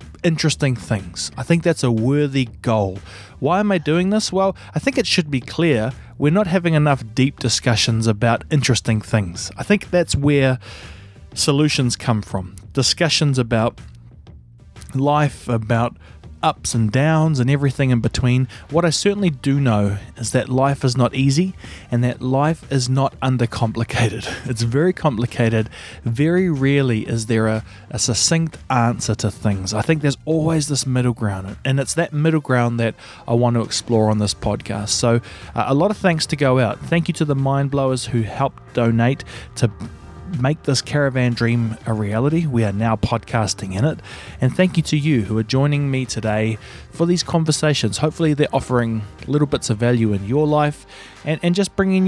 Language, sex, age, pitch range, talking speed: English, male, 20-39, 115-150 Hz, 180 wpm